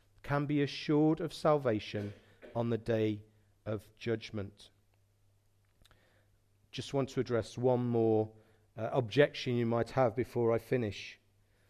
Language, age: English, 40-59